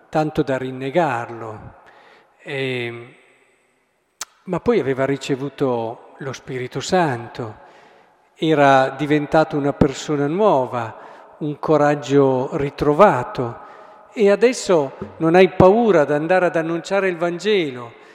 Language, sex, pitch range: Italian, male, 130-175 Hz